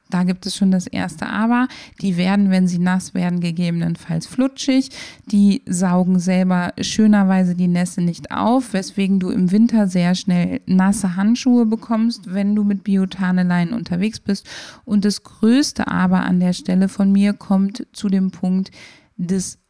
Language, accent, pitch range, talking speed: German, German, 175-205 Hz, 160 wpm